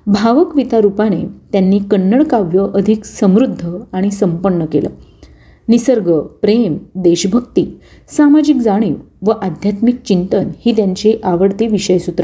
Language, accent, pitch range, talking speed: Marathi, native, 185-260 Hz, 110 wpm